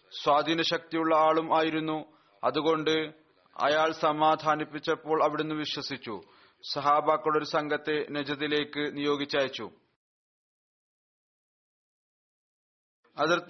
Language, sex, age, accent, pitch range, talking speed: Malayalam, male, 40-59, native, 155-165 Hz, 70 wpm